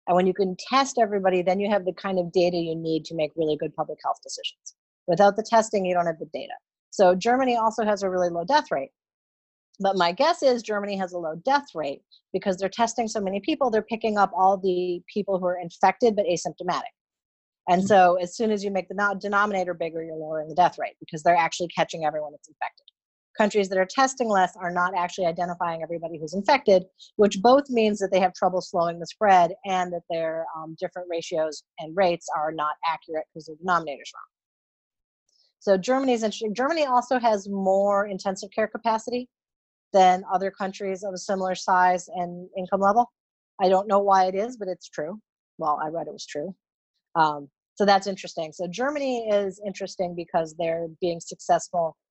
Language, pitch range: English, 170-205 Hz